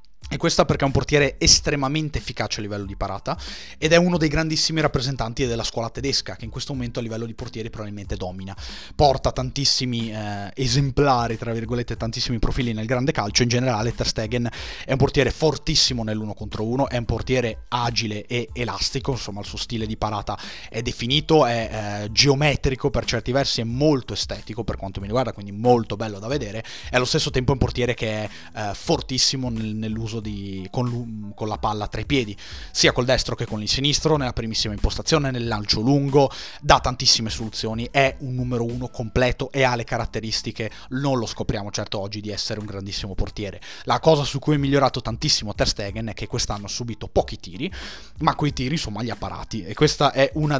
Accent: native